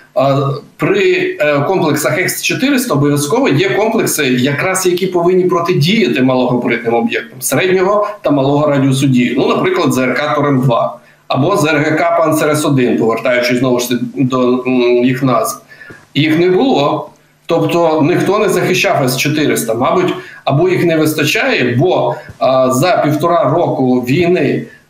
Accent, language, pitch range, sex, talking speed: native, Ukrainian, 130-170 Hz, male, 125 wpm